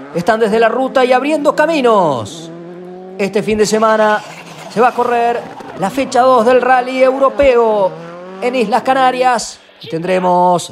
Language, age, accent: Spanish, 30-49, Argentinian